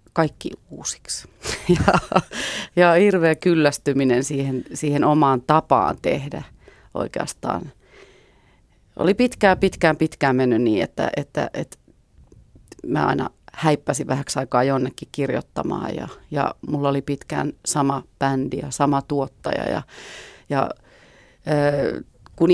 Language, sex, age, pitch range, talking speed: Finnish, female, 30-49, 140-165 Hz, 110 wpm